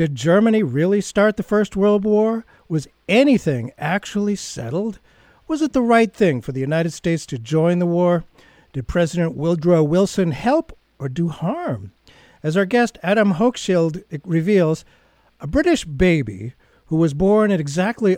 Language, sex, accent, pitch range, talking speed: English, male, American, 150-200 Hz, 155 wpm